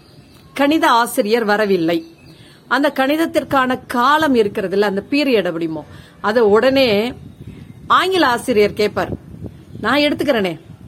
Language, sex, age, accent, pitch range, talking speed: English, female, 40-59, Indian, 195-265 Hz, 90 wpm